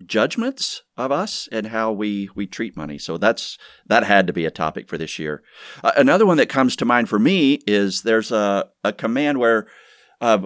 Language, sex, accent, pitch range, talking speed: English, male, American, 85-105 Hz, 205 wpm